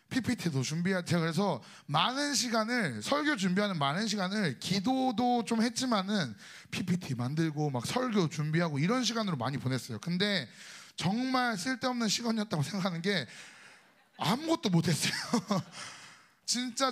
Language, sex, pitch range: Korean, male, 160-225 Hz